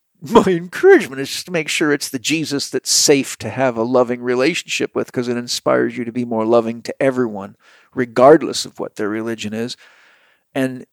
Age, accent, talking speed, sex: 50-69, American, 190 wpm, male